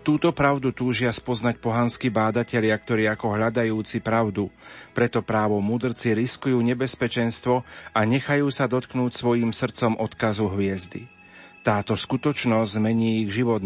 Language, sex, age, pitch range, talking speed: Slovak, male, 40-59, 105-120 Hz, 125 wpm